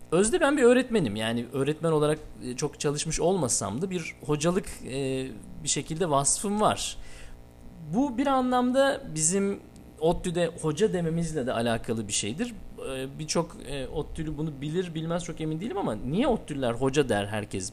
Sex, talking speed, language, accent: male, 140 wpm, Turkish, native